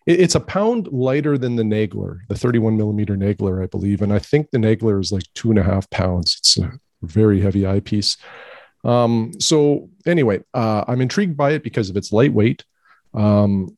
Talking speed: 185 wpm